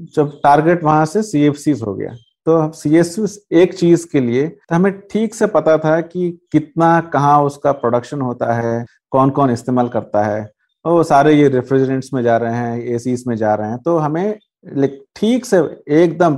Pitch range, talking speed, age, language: 125-165 Hz, 175 wpm, 50-69, Hindi